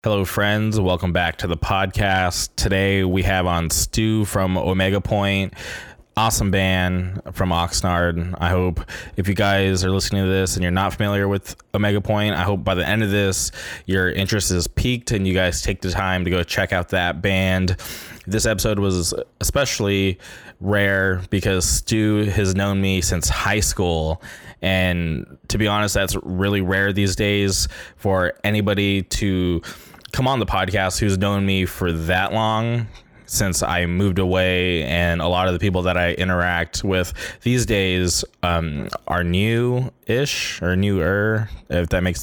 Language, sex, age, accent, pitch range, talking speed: English, male, 20-39, American, 90-105 Hz, 170 wpm